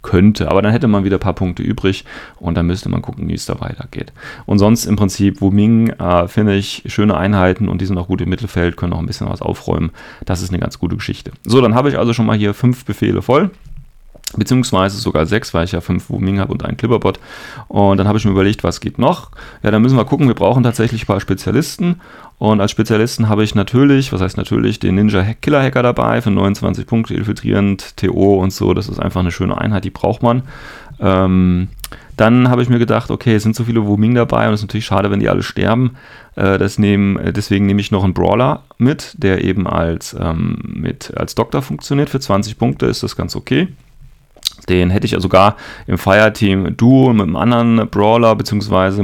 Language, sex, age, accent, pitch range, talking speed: German, male, 30-49, German, 95-120 Hz, 215 wpm